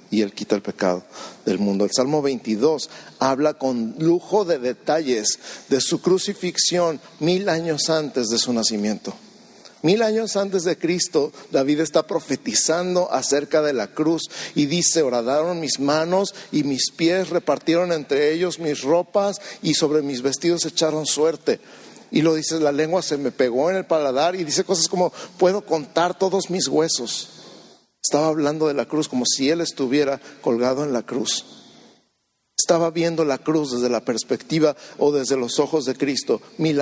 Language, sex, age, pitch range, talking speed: Spanish, male, 50-69, 130-170 Hz, 165 wpm